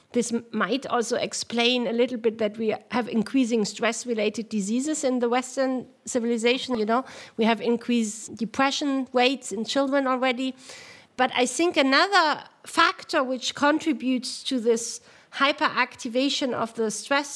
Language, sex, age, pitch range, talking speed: English, female, 40-59, 240-295 Hz, 140 wpm